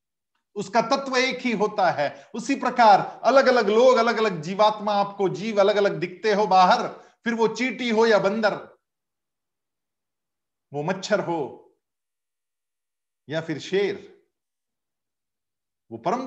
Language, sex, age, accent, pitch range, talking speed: Hindi, male, 50-69, native, 180-245 Hz, 130 wpm